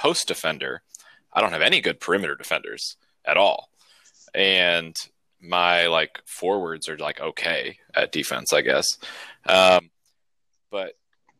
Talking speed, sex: 125 wpm, male